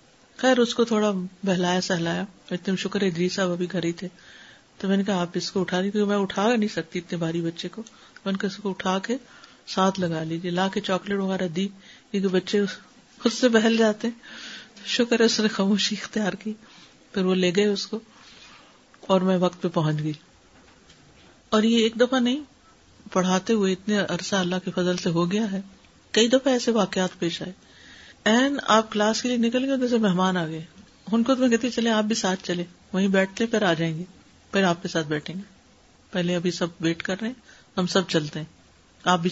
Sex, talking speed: female, 210 wpm